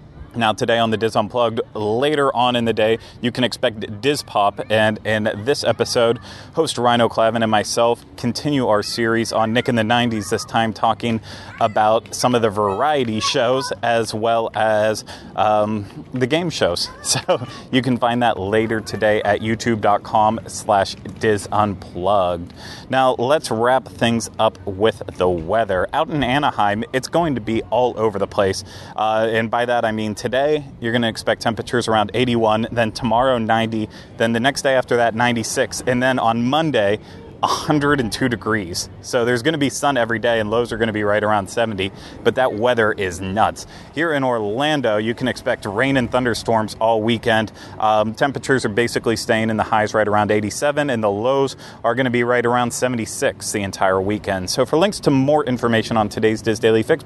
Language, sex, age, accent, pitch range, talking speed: English, male, 30-49, American, 110-130 Hz, 190 wpm